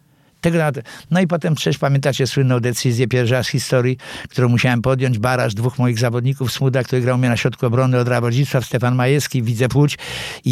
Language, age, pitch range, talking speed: Polish, 60-79, 125-150 Hz, 175 wpm